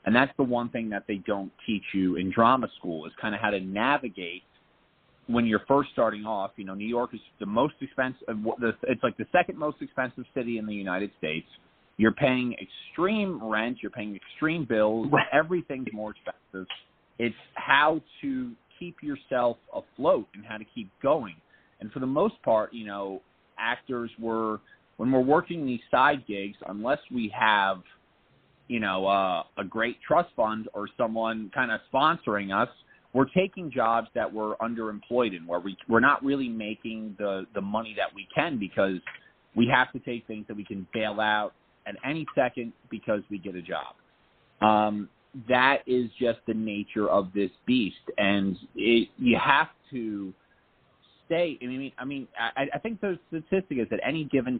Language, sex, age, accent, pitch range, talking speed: English, male, 30-49, American, 105-130 Hz, 180 wpm